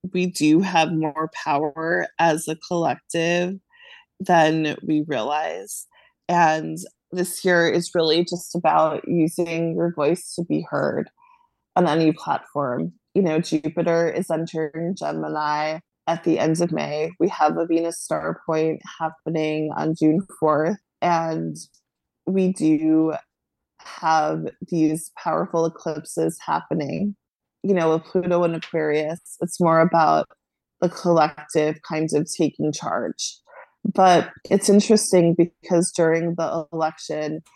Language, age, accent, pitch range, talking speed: English, 20-39, American, 155-175 Hz, 125 wpm